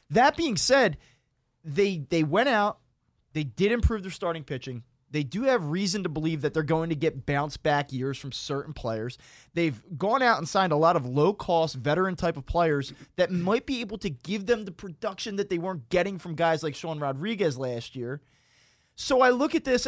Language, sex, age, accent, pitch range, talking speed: English, male, 20-39, American, 150-210 Hz, 200 wpm